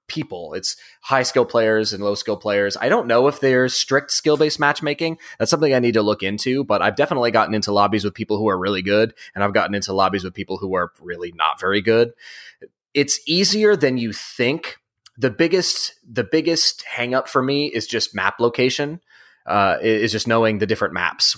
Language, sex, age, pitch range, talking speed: English, male, 20-39, 100-130 Hz, 210 wpm